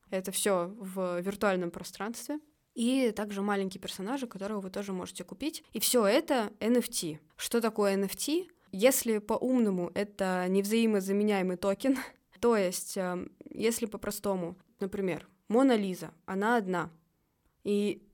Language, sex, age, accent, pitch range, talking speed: Russian, female, 20-39, native, 190-230 Hz, 120 wpm